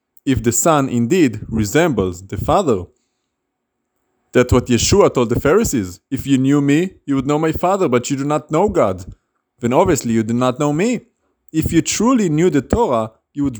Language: English